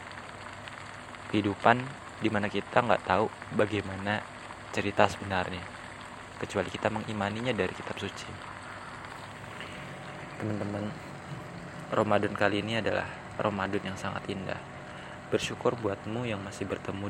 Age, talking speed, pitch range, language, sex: 20-39, 100 wpm, 100-110 Hz, Indonesian, male